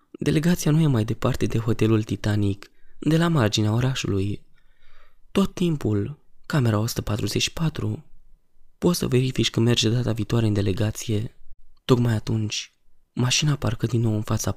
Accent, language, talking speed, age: native, Romanian, 135 wpm, 20-39